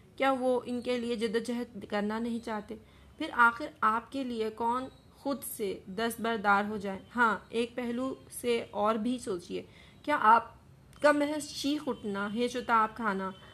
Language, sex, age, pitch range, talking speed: English, female, 30-49, 210-250 Hz, 150 wpm